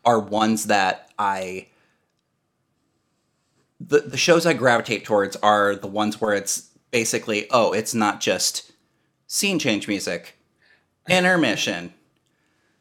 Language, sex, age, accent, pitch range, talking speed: English, male, 30-49, American, 100-125 Hz, 110 wpm